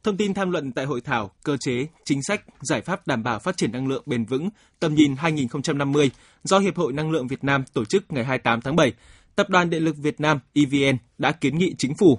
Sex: male